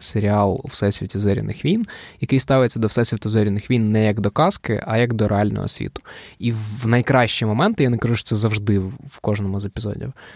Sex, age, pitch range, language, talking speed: male, 20-39, 100-120 Hz, Ukrainian, 195 wpm